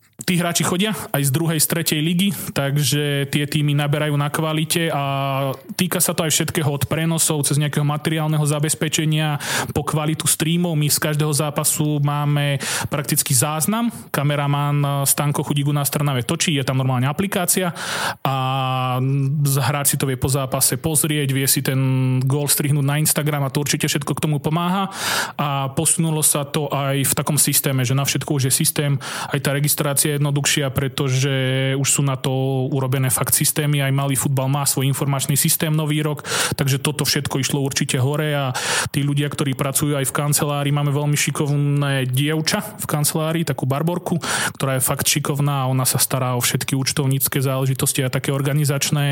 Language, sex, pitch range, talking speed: Slovak, male, 135-155 Hz, 170 wpm